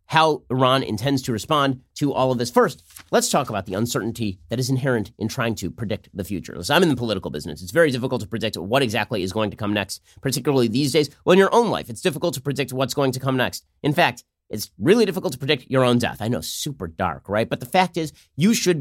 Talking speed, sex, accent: 250 wpm, male, American